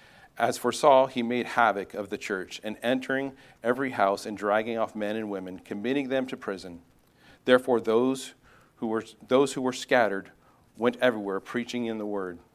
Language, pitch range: English, 105-130 Hz